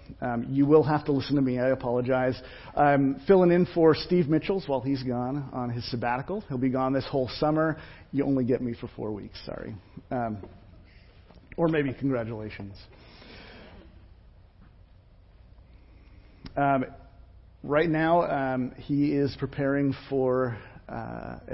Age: 50-69